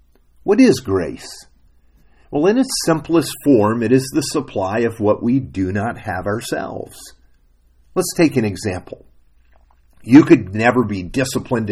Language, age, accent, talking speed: English, 50-69, American, 145 wpm